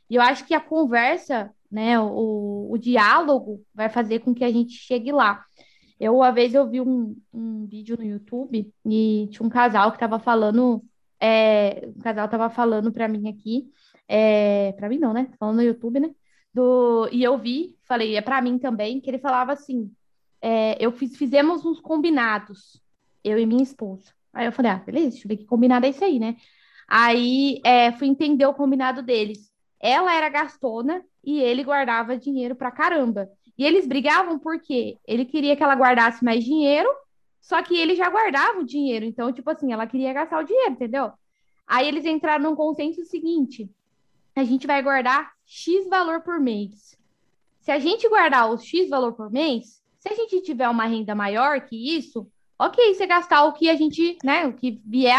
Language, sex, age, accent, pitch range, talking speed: Portuguese, female, 20-39, Brazilian, 230-295 Hz, 190 wpm